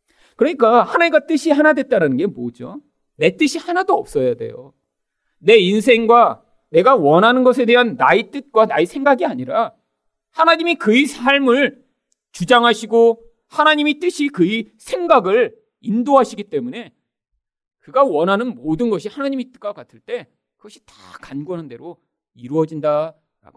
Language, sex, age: Korean, male, 40-59